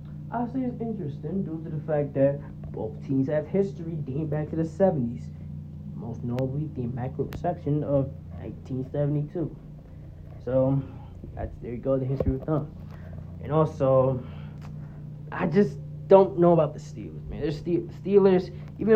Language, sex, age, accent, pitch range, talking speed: English, male, 20-39, American, 125-155 Hz, 140 wpm